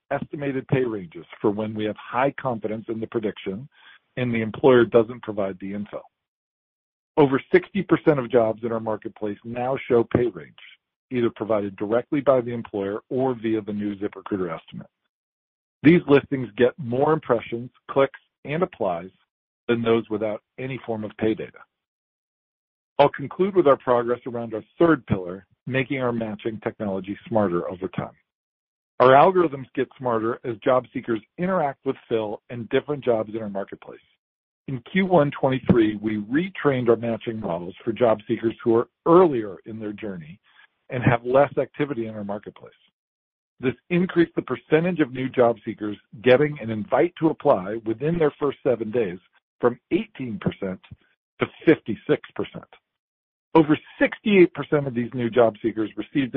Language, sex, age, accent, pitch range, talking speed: English, male, 50-69, American, 110-140 Hz, 150 wpm